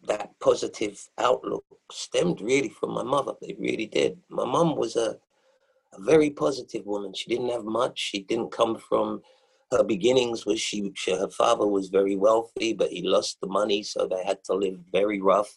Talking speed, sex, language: 185 wpm, male, English